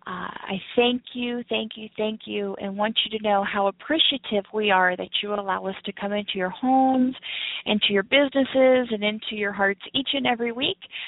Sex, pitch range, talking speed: female, 200-255 Hz, 200 wpm